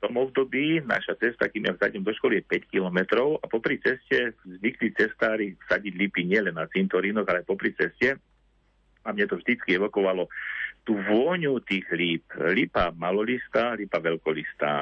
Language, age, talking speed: Slovak, 50-69, 165 wpm